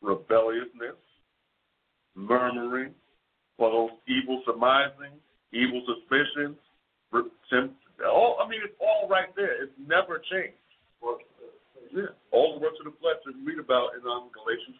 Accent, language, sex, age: American, English, male, 50-69